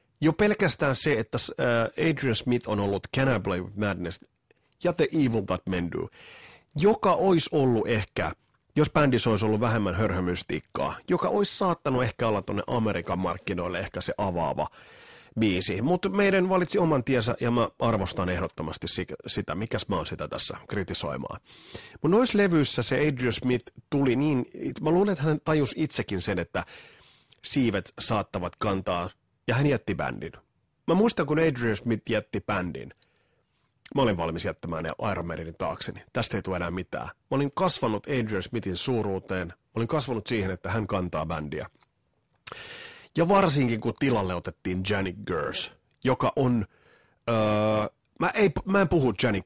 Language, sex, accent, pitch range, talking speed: Finnish, male, native, 100-150 Hz, 155 wpm